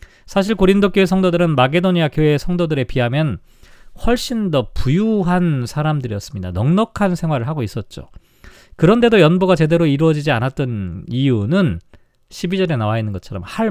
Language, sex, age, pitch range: Korean, male, 40-59, 125-190 Hz